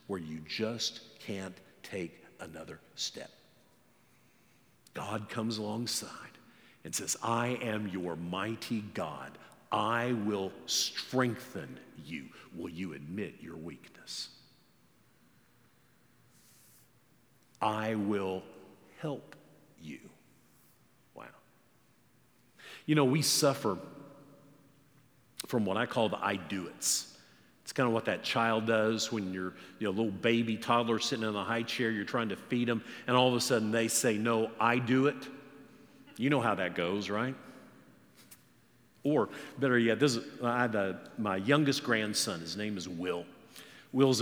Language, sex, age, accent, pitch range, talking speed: English, male, 50-69, American, 105-135 Hz, 135 wpm